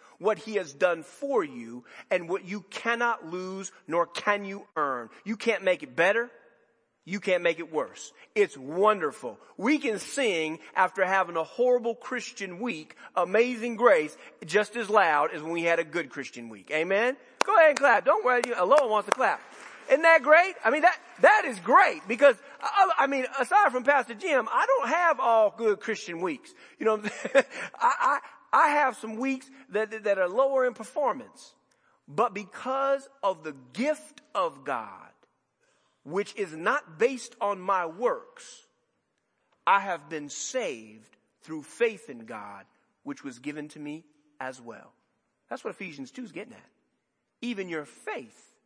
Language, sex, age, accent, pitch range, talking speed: English, male, 40-59, American, 175-275 Hz, 170 wpm